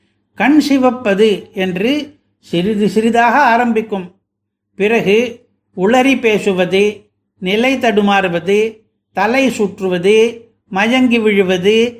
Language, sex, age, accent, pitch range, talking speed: Tamil, male, 60-79, native, 180-230 Hz, 75 wpm